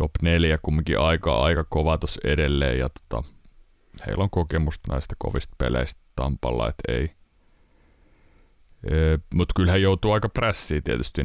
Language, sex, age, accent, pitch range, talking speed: Finnish, male, 30-49, native, 75-95 Hz, 135 wpm